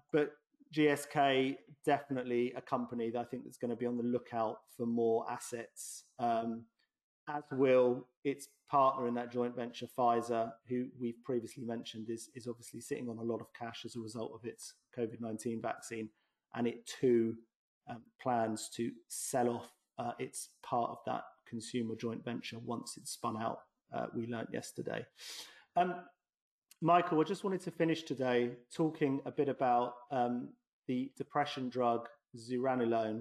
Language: English